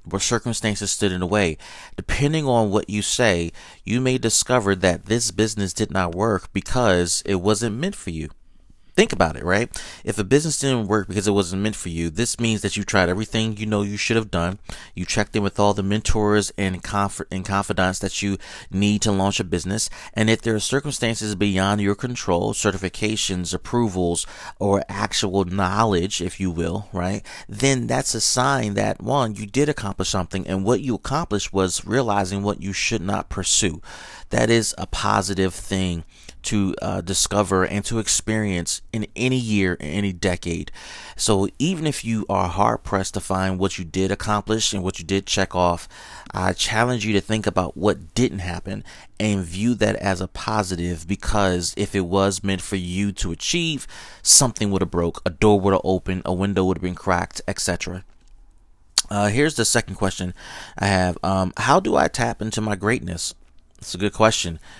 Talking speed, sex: 190 wpm, male